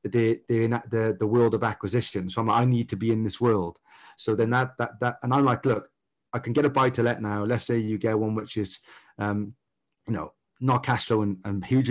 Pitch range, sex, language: 110-130 Hz, male, English